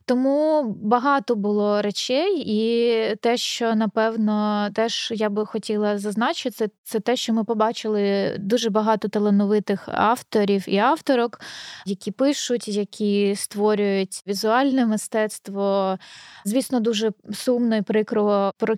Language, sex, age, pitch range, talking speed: Ukrainian, female, 20-39, 205-230 Hz, 115 wpm